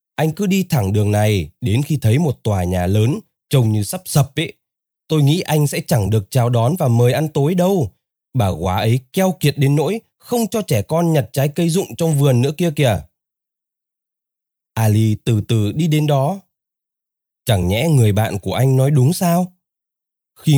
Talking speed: 195 wpm